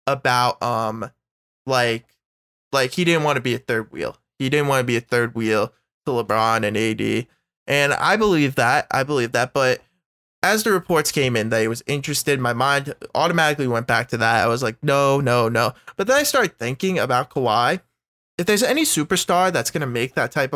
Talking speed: 205 wpm